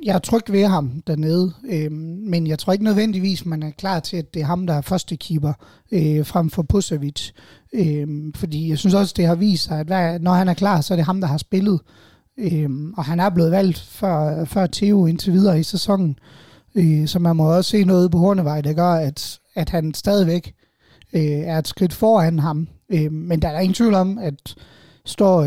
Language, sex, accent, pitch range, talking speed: Danish, male, native, 155-190 Hz, 215 wpm